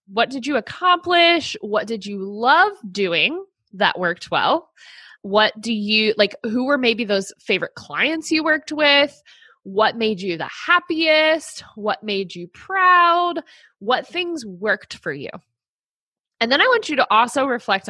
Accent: American